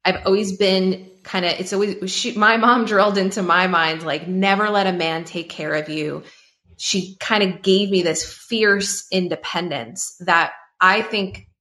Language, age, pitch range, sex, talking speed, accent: English, 20-39, 165-195 Hz, female, 170 wpm, American